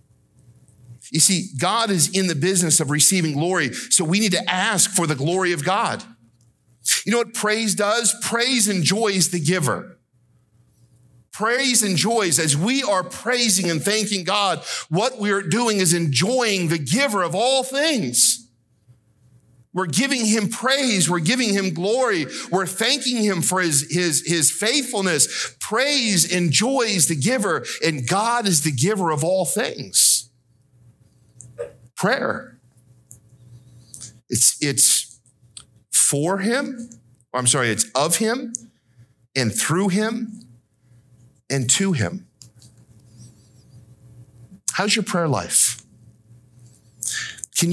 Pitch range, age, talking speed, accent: 120-195 Hz, 50-69, 120 wpm, American